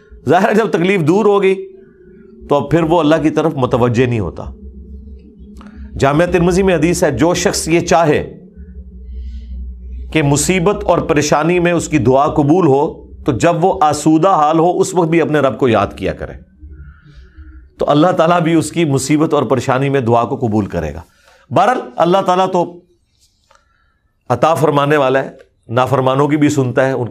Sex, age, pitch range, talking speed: male, 40-59, 115-160 Hz, 175 wpm